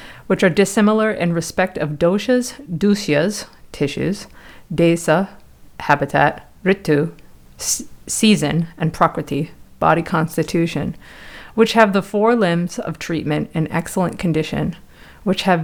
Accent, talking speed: American, 110 wpm